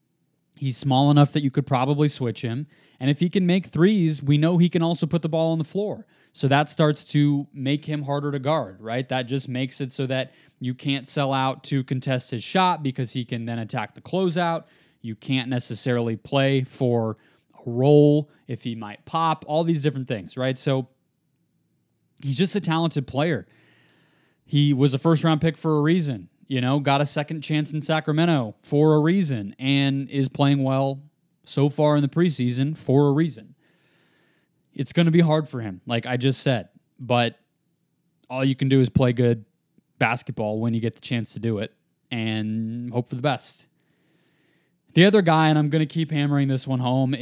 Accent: American